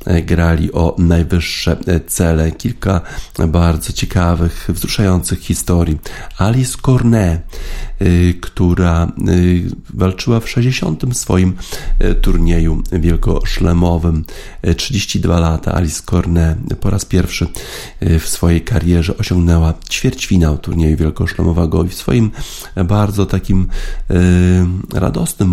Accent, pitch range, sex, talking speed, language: native, 80-95 Hz, male, 90 wpm, Polish